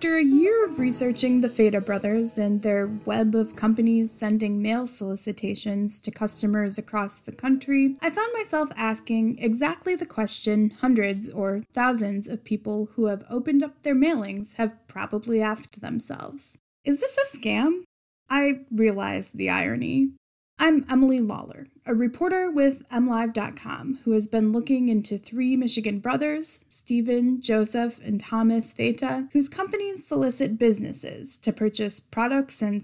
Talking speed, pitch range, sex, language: 145 wpm, 215-270 Hz, female, English